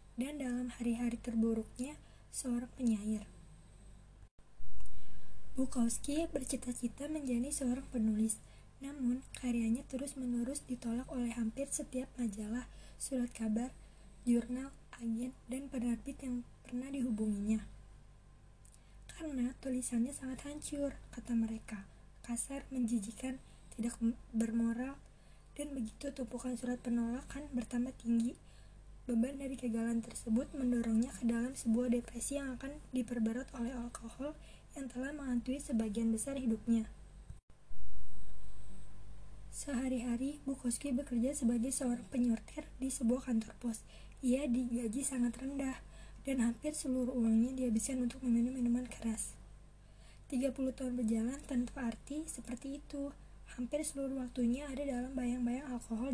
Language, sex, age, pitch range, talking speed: Indonesian, female, 20-39, 230-265 Hz, 110 wpm